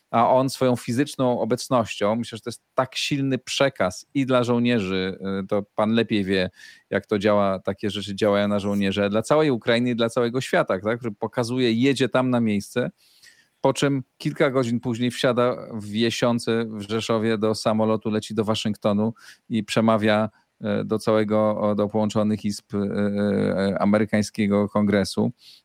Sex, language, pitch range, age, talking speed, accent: male, Polish, 105-120 Hz, 40-59, 150 wpm, native